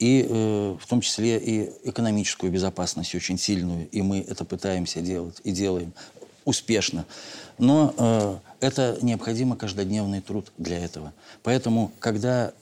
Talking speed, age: 135 wpm, 50-69